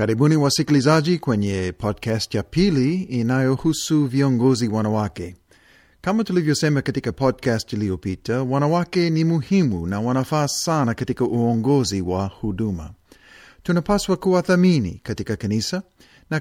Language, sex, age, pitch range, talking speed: Swahili, male, 40-59, 105-150 Hz, 110 wpm